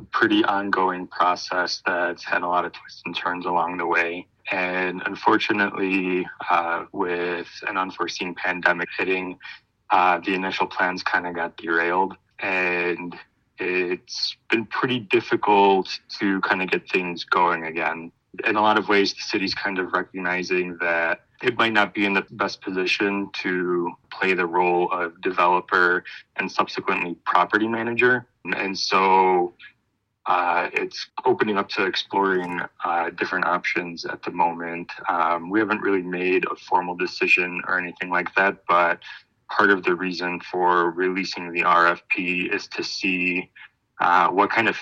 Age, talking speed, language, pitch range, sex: 20-39, 150 wpm, English, 90-105 Hz, male